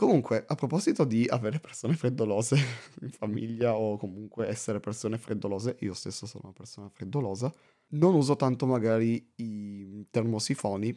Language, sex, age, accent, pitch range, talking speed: Italian, male, 20-39, native, 105-130 Hz, 140 wpm